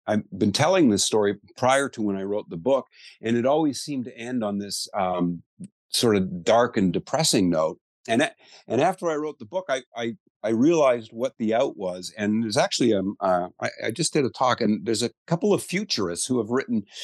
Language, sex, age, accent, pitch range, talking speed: English, male, 50-69, American, 105-140 Hz, 220 wpm